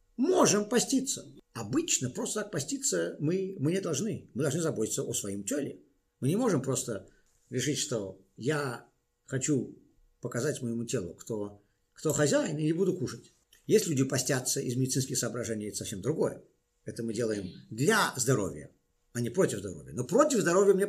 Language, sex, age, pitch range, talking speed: Russian, male, 50-69, 125-185 Hz, 160 wpm